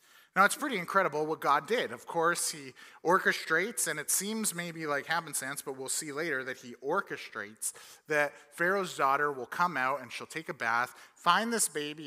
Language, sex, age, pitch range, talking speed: English, male, 30-49, 130-165 Hz, 190 wpm